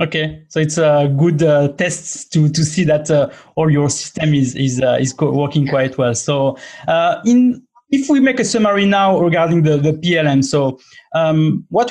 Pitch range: 150-195 Hz